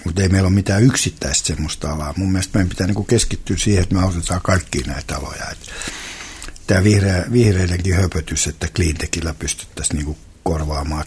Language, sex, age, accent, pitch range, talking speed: Finnish, male, 60-79, native, 80-100 Hz, 145 wpm